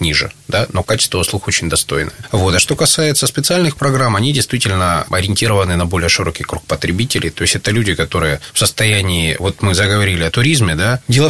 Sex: male